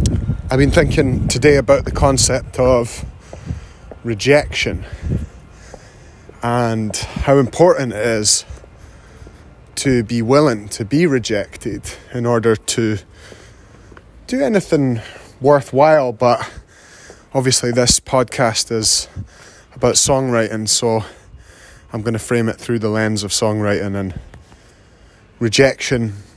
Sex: male